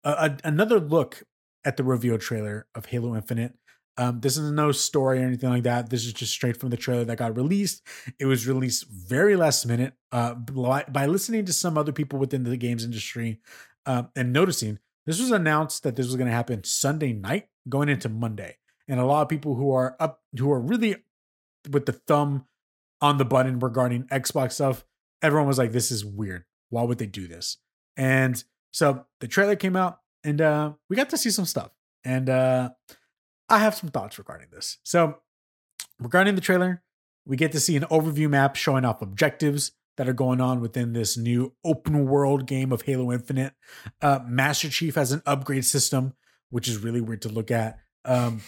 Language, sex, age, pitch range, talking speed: English, male, 20-39, 125-155 Hz, 195 wpm